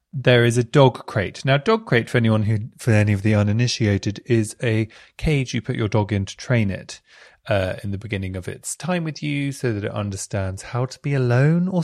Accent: British